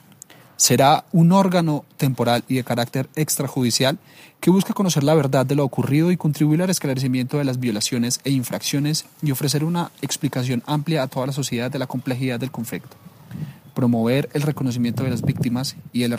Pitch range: 125-150 Hz